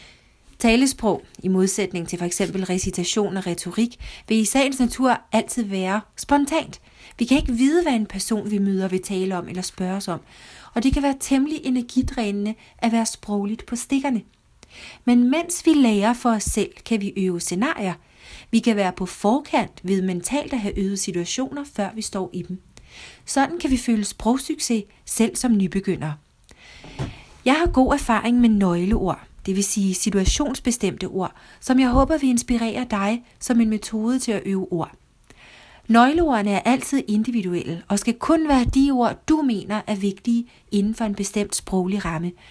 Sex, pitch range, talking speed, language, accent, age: female, 190-245 Hz, 170 wpm, Danish, native, 40-59